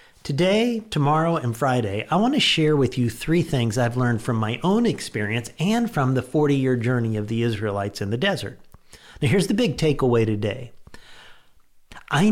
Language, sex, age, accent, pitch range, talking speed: English, male, 50-69, American, 115-160 Hz, 175 wpm